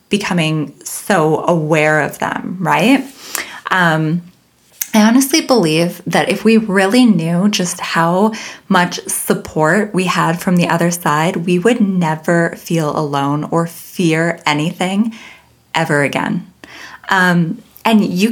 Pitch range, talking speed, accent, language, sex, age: 165-215 Hz, 125 wpm, American, English, female, 20-39